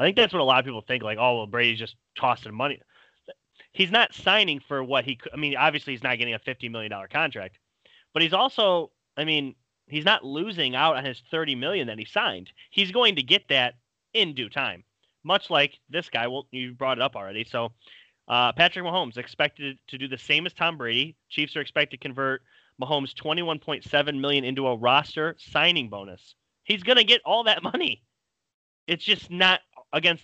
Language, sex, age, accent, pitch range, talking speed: English, male, 30-49, American, 125-165 Hz, 200 wpm